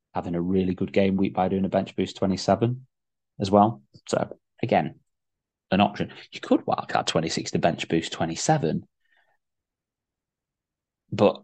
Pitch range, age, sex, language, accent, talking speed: 90-110 Hz, 20-39, male, English, British, 140 wpm